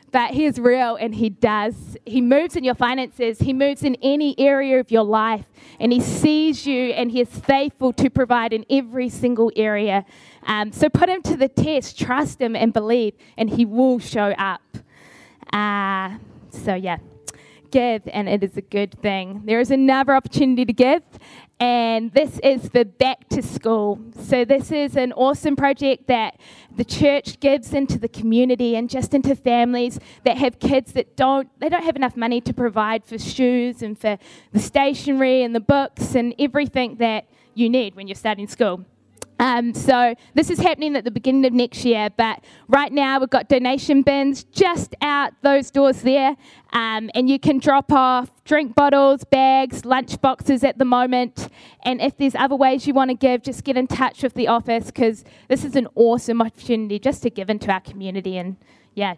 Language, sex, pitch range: English, female, 225-275 Hz